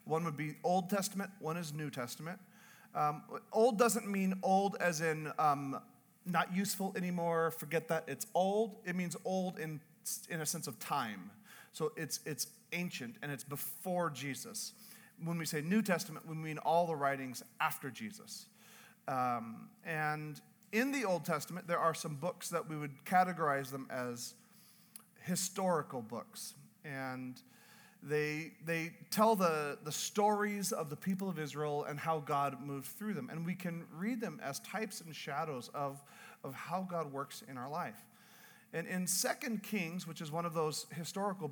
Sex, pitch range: male, 155-210 Hz